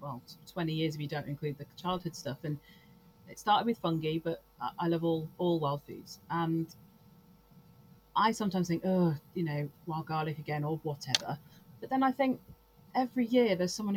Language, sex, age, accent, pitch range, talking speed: English, female, 30-49, British, 160-190 Hz, 180 wpm